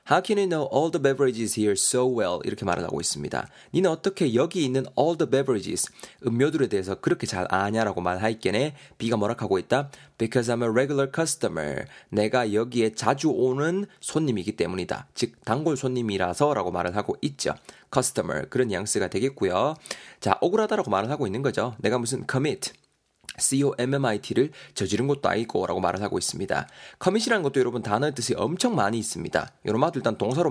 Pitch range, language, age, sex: 110-160 Hz, Korean, 20-39, male